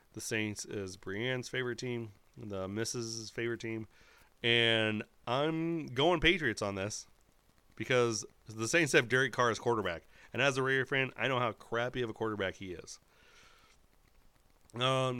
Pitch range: 105-130 Hz